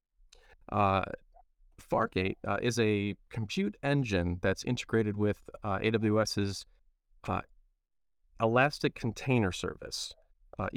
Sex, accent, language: male, American, English